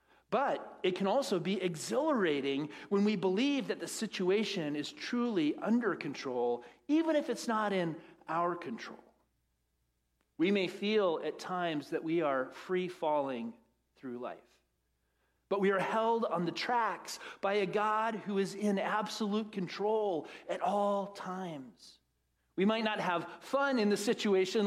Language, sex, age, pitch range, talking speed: English, male, 40-59, 140-210 Hz, 150 wpm